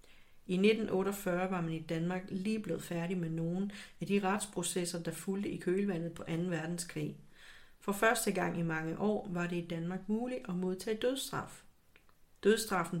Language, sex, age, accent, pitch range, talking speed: Danish, female, 40-59, native, 170-200 Hz, 165 wpm